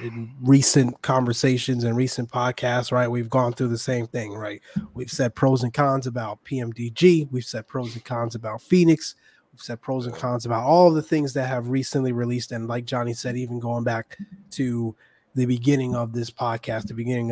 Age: 20-39